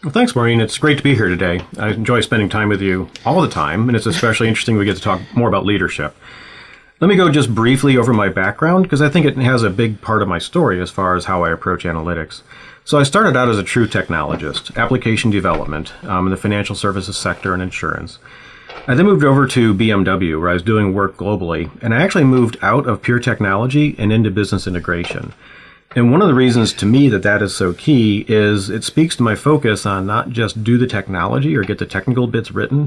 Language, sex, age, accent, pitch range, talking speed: English, male, 40-59, American, 95-125 Hz, 230 wpm